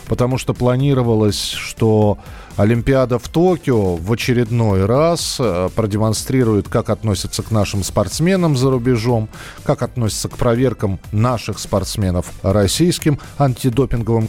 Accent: native